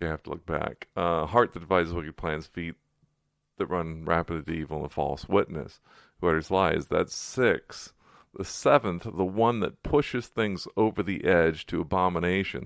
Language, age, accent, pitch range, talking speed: English, 40-59, American, 85-105 Hz, 180 wpm